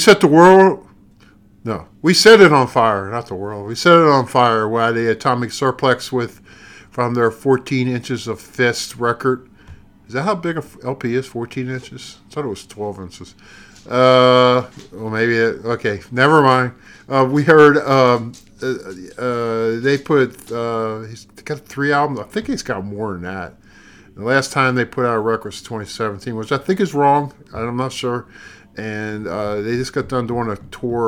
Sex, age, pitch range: male, 50-69, 105-135 Hz